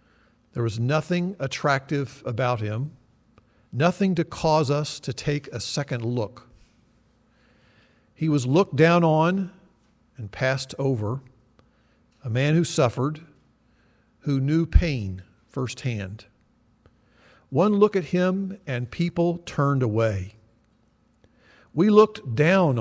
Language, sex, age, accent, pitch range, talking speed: English, male, 50-69, American, 115-165 Hz, 110 wpm